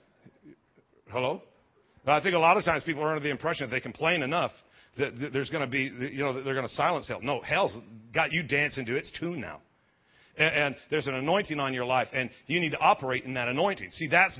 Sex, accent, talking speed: male, American, 230 wpm